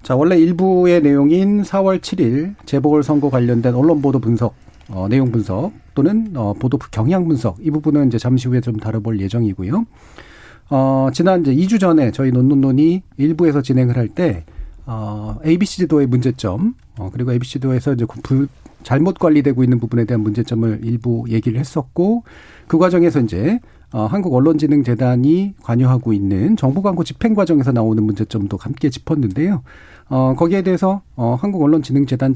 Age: 40-59